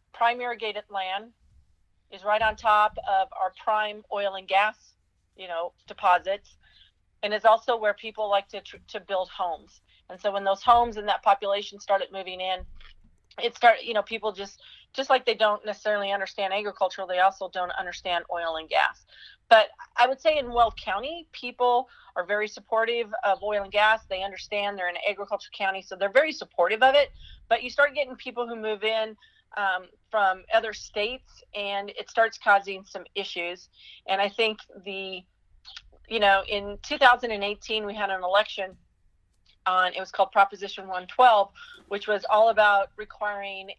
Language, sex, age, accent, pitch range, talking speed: English, female, 40-59, American, 190-225 Hz, 175 wpm